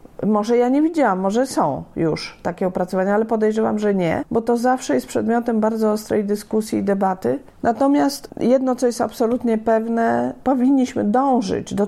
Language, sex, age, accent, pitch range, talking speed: Polish, female, 40-59, native, 190-245 Hz, 160 wpm